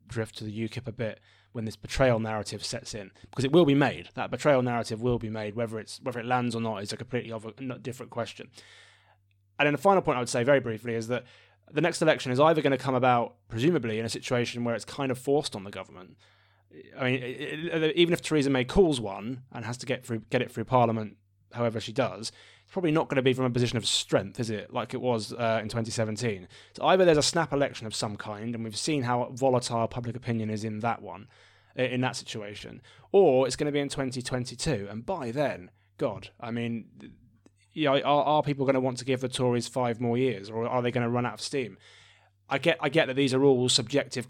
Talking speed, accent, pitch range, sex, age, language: 240 wpm, British, 110-130 Hz, male, 20-39, English